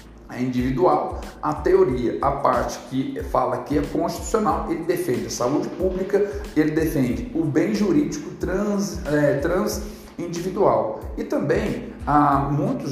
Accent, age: Brazilian, 40-59